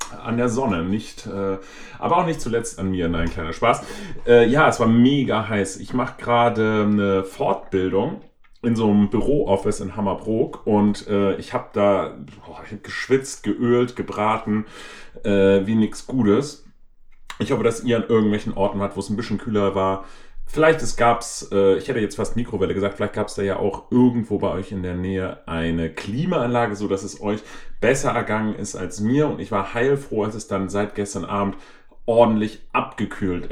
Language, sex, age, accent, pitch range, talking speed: German, male, 30-49, German, 95-120 Hz, 185 wpm